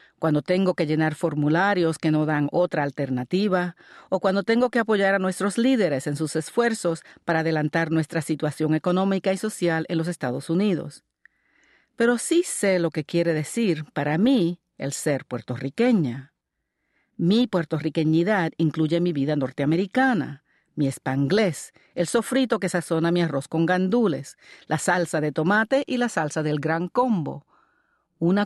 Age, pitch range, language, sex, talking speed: 50-69, 150-200 Hz, Spanish, female, 150 wpm